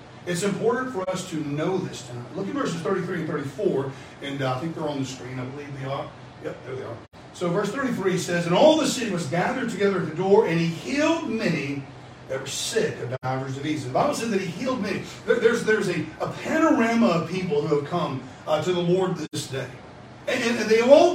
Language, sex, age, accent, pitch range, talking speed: English, male, 40-59, American, 155-220 Hz, 235 wpm